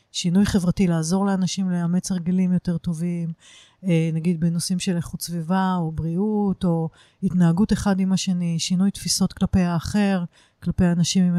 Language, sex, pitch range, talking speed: English, female, 170-205 Hz, 140 wpm